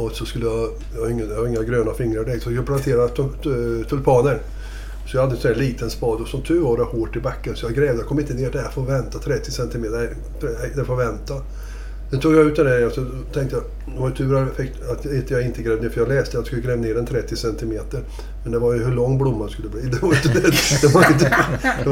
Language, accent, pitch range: Swedish, native, 115-135 Hz